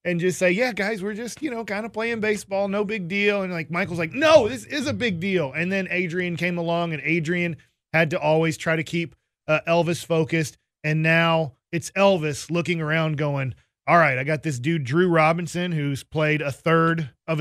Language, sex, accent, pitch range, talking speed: English, male, American, 155-180 Hz, 215 wpm